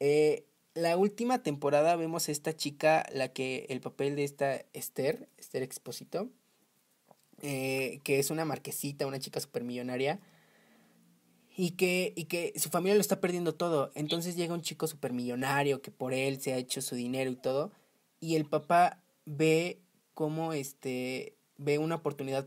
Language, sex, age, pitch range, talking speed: Spanish, male, 20-39, 135-160 Hz, 160 wpm